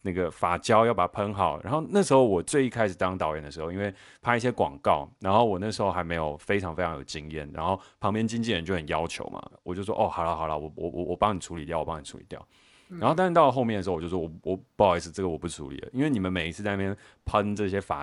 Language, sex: Chinese, male